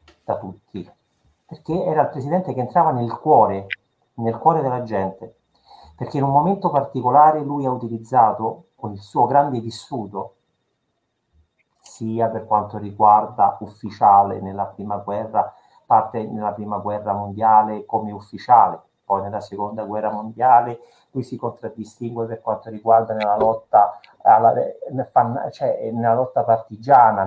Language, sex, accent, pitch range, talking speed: Italian, male, native, 105-125 Hz, 130 wpm